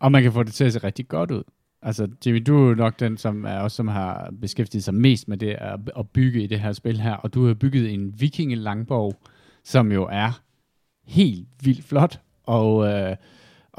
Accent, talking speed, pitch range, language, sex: native, 220 wpm, 100-125 Hz, Danish, male